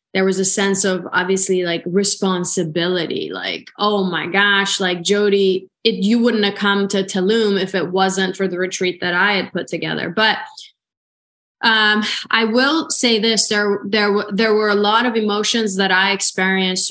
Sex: female